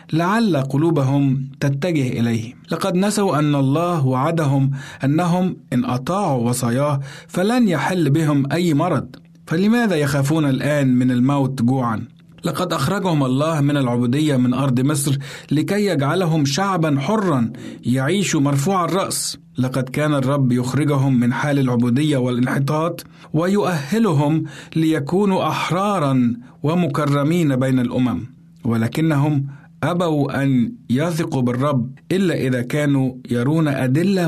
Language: Arabic